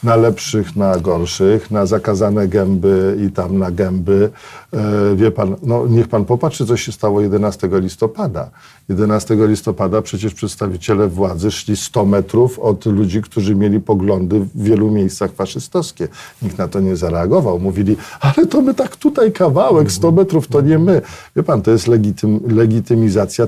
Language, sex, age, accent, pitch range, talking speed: Polish, male, 50-69, native, 100-130 Hz, 155 wpm